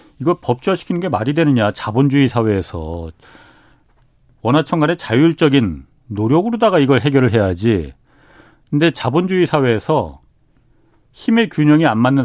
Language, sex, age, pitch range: Korean, male, 40-59, 115-165 Hz